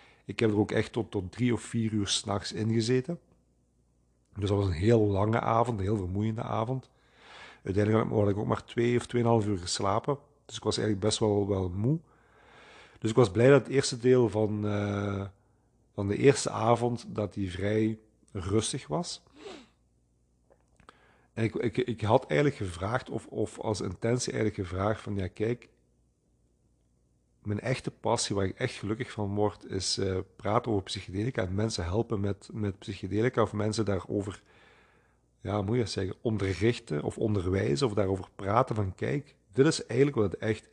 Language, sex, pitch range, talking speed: Dutch, male, 100-115 Hz, 175 wpm